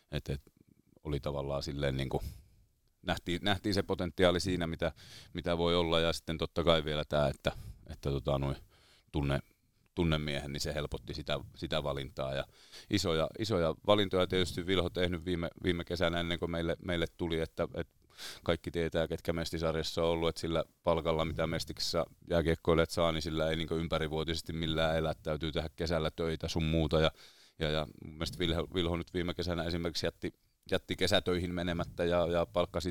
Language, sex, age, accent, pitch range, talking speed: Finnish, male, 30-49, native, 80-90 Hz, 165 wpm